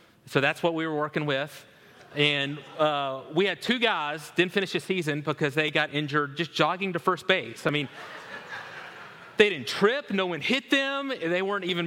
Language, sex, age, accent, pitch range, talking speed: English, male, 30-49, American, 150-210 Hz, 190 wpm